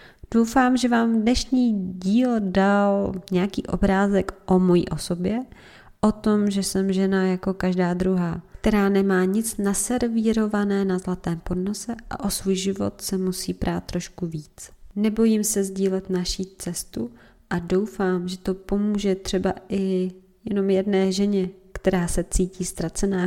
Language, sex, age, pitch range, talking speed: Czech, female, 20-39, 180-205 Hz, 140 wpm